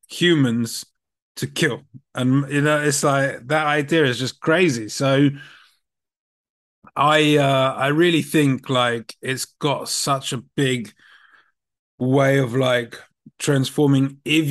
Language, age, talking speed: English, 20-39, 125 wpm